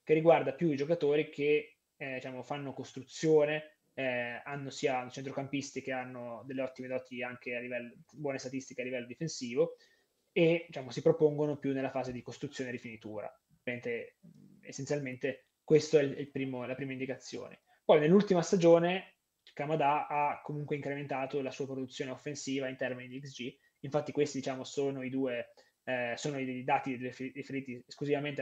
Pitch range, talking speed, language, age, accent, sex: 130-155 Hz, 155 wpm, Italian, 20-39, native, male